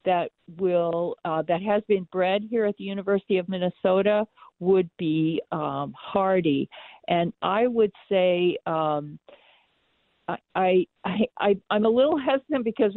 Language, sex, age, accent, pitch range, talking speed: English, female, 50-69, American, 160-195 Hz, 140 wpm